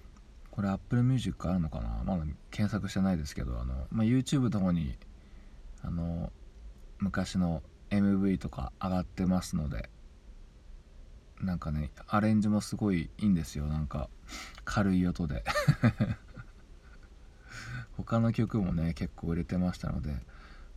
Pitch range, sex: 70-95 Hz, male